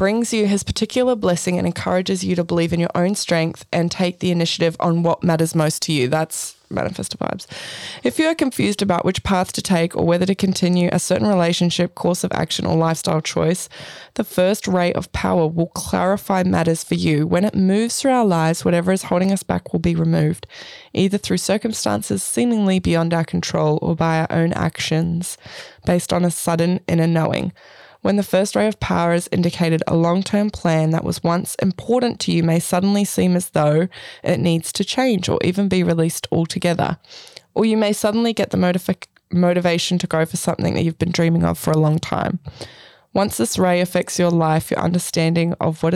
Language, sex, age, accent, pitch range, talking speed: English, female, 20-39, Australian, 165-190 Hz, 200 wpm